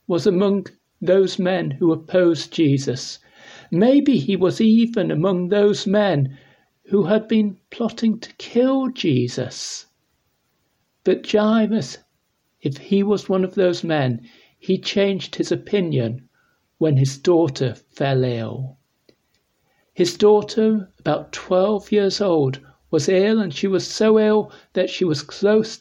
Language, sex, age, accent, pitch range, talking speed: English, male, 60-79, British, 155-205 Hz, 130 wpm